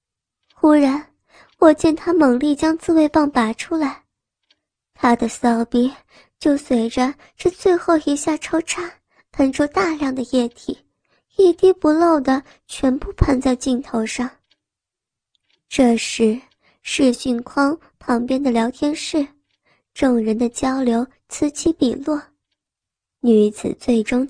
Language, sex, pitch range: Chinese, male, 230-300 Hz